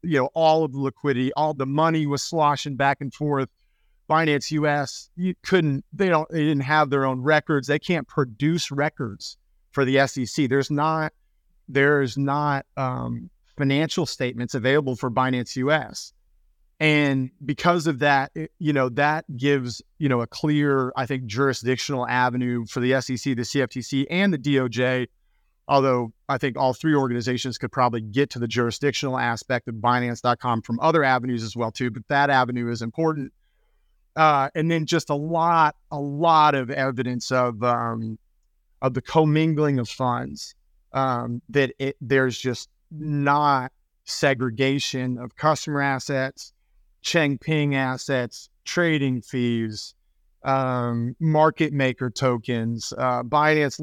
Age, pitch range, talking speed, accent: 30-49, 125-150 Hz, 150 wpm, American